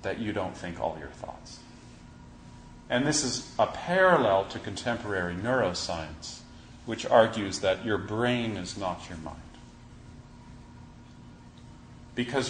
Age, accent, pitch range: 40-59, American, 85-125 Hz